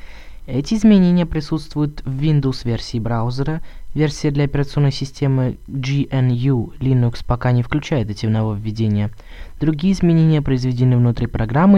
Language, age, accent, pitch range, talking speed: Russian, 20-39, native, 105-140 Hz, 110 wpm